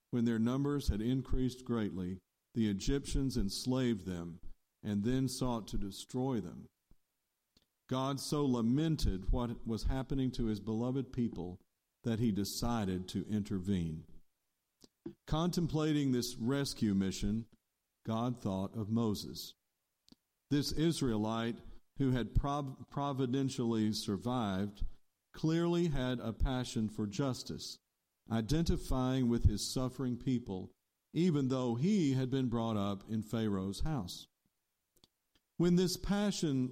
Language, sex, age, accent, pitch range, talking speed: English, male, 50-69, American, 105-135 Hz, 115 wpm